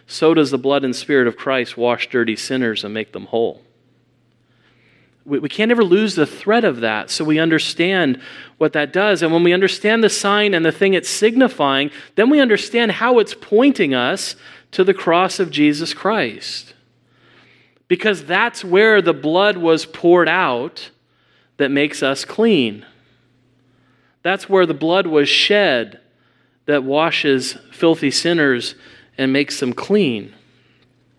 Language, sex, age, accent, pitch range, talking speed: English, male, 40-59, American, 125-175 Hz, 150 wpm